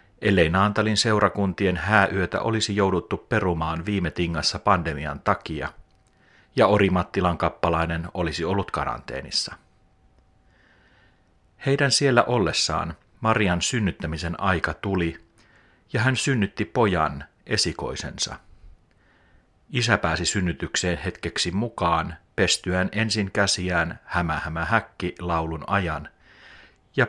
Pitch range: 85-105 Hz